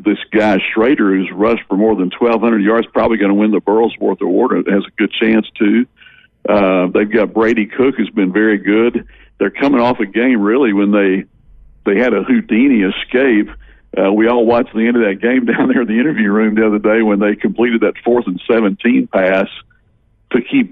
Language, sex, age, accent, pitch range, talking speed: English, male, 60-79, American, 100-115 Hz, 215 wpm